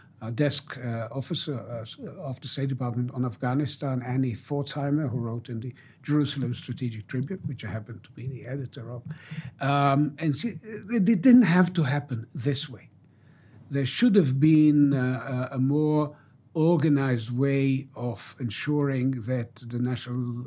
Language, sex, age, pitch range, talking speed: English, male, 60-79, 120-150 Hz, 150 wpm